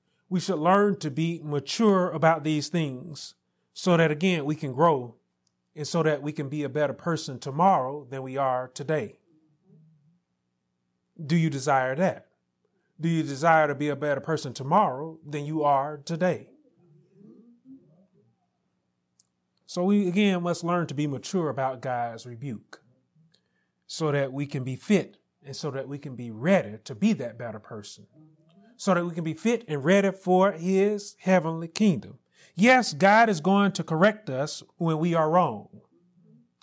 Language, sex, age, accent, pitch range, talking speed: English, male, 30-49, American, 140-190 Hz, 160 wpm